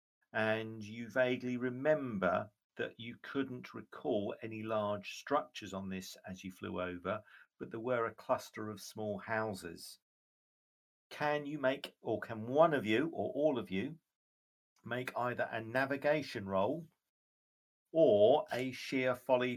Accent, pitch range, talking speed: British, 105-135 Hz, 140 wpm